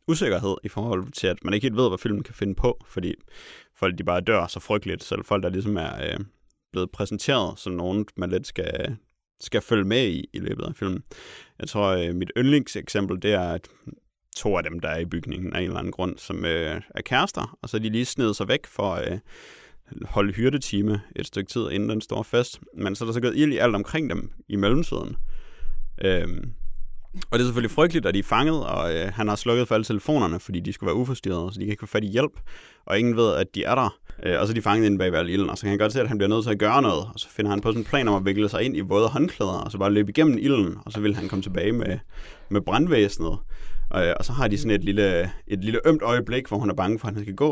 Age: 30-49